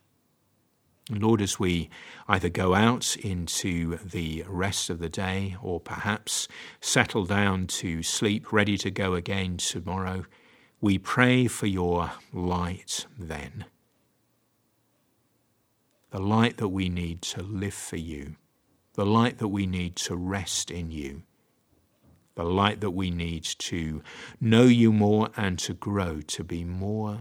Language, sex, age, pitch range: English, male, 50-69, 85-105 Hz